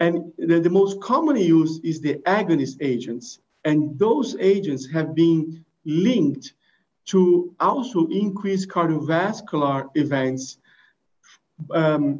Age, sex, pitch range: 50-69, male, 155-190 Hz